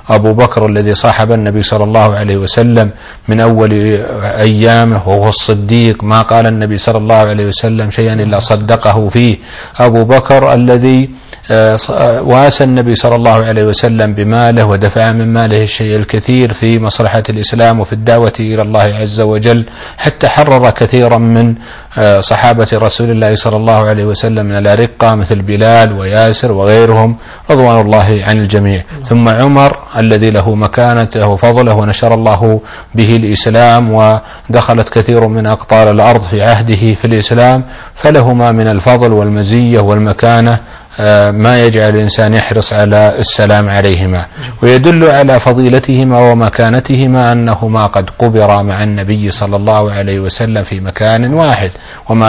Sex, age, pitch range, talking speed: male, 40-59, 105-120 Hz, 135 wpm